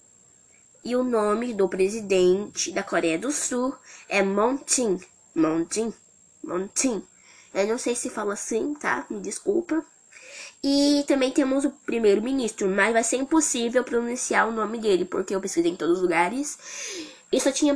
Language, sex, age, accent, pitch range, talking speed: Portuguese, female, 10-29, Brazilian, 205-285 Hz, 150 wpm